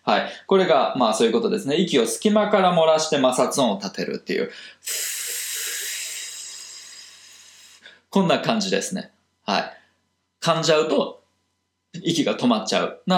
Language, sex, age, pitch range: Japanese, male, 20-39, 155-225 Hz